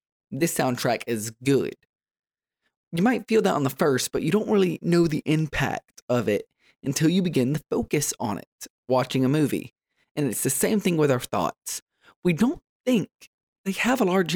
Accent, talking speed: American, 190 wpm